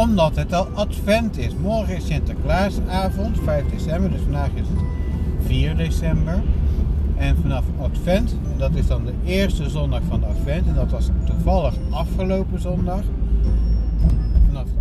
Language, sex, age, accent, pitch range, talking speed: Dutch, male, 60-79, Dutch, 65-80 Hz, 145 wpm